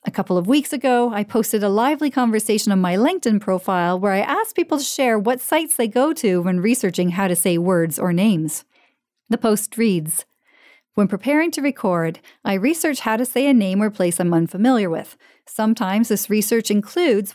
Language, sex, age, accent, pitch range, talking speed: English, female, 40-59, American, 190-260 Hz, 195 wpm